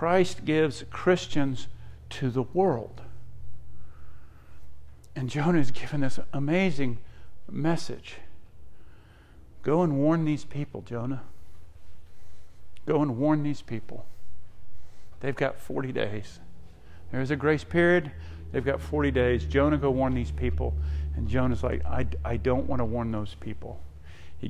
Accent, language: American, English